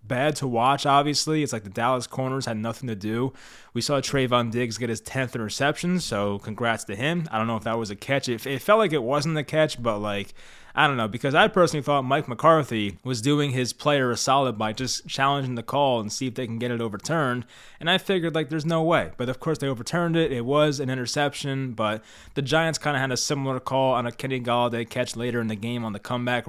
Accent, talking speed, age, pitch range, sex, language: American, 250 wpm, 20-39, 115-145 Hz, male, English